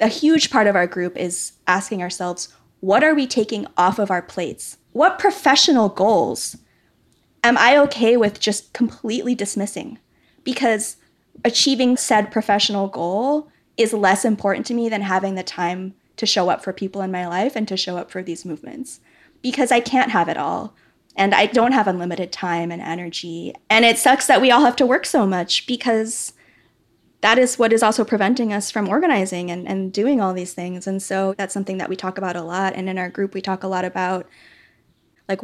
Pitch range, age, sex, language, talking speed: 180-235 Hz, 20-39, female, English, 200 wpm